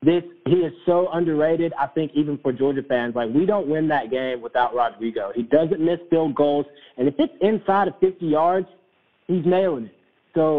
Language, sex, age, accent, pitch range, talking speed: English, male, 30-49, American, 125-155 Hz, 200 wpm